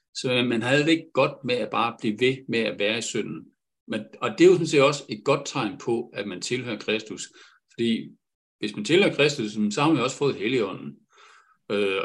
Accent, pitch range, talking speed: native, 115-170 Hz, 225 wpm